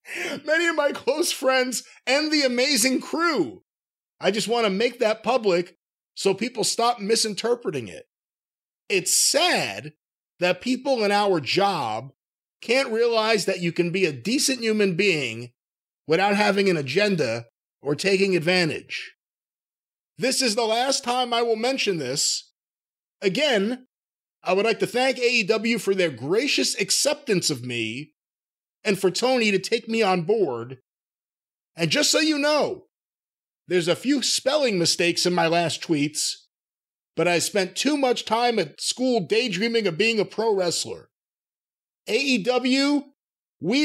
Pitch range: 175-255 Hz